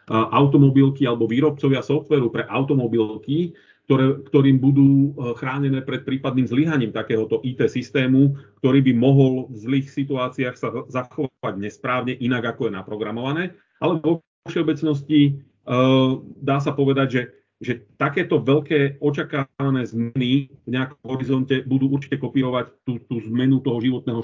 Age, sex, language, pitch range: 40-59, male, Slovak, 115-140 Hz